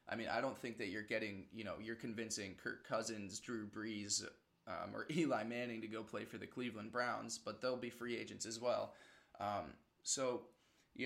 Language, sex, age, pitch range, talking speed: English, male, 20-39, 110-135 Hz, 200 wpm